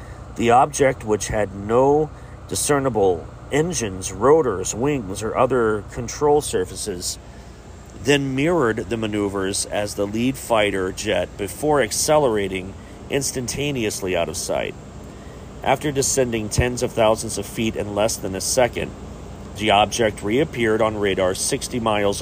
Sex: male